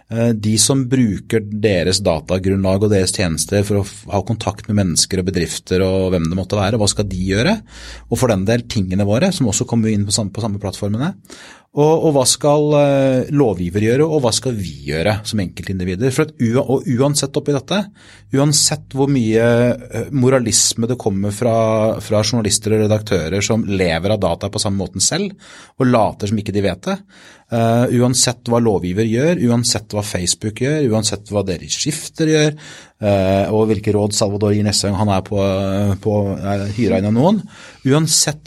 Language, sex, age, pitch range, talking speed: English, male, 30-49, 100-135 Hz, 175 wpm